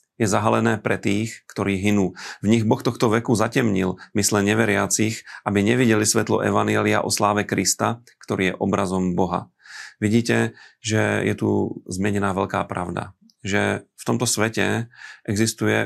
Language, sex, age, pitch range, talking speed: Slovak, male, 40-59, 100-110 Hz, 140 wpm